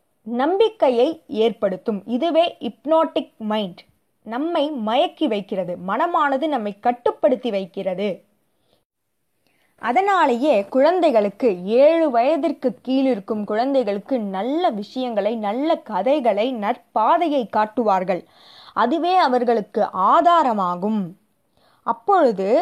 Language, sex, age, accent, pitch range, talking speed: Tamil, female, 20-39, native, 215-300 Hz, 75 wpm